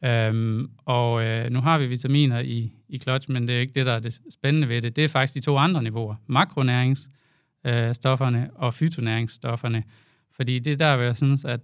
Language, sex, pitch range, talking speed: Danish, male, 115-140 Hz, 205 wpm